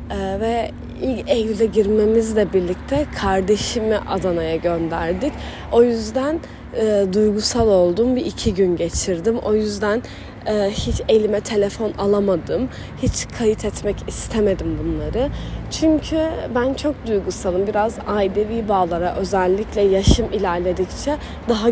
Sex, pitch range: female, 185-240 Hz